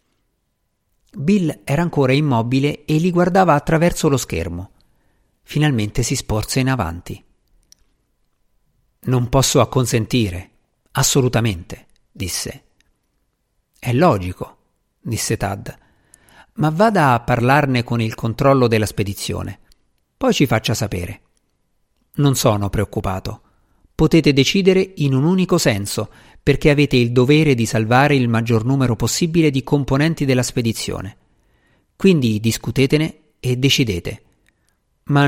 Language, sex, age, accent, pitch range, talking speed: Italian, male, 50-69, native, 105-145 Hz, 110 wpm